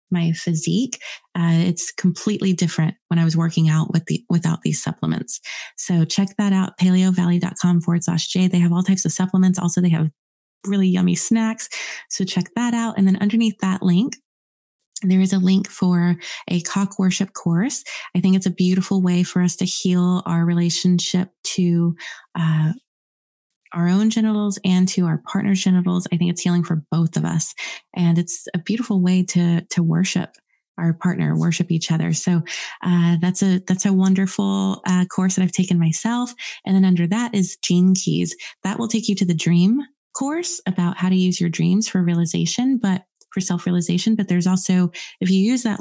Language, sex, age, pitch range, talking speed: English, female, 20-39, 170-195 Hz, 190 wpm